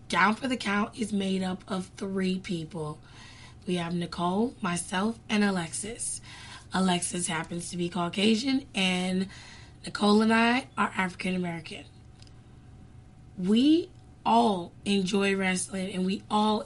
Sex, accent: female, American